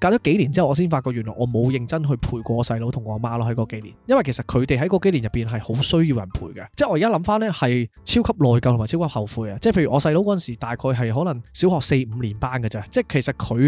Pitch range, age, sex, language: 115-150 Hz, 20-39, male, Chinese